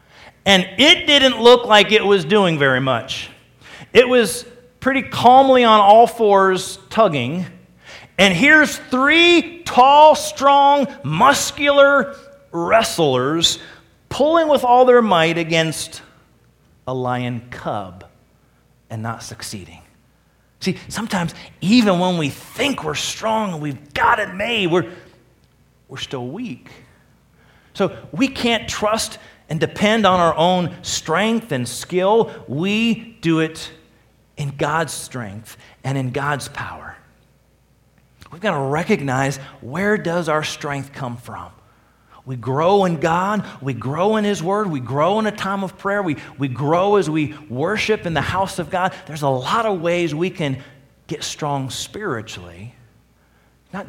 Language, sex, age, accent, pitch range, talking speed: English, male, 40-59, American, 135-215 Hz, 140 wpm